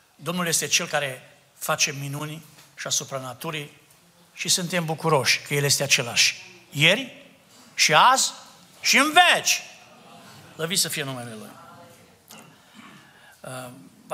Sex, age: male, 60-79